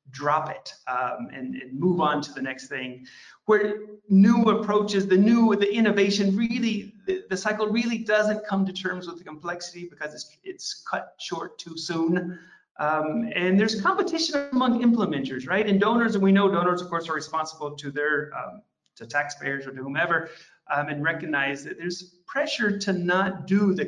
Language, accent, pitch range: English, American, 150-210 Hz